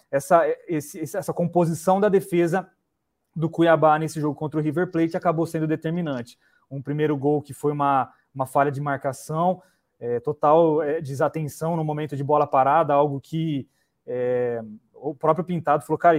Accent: Brazilian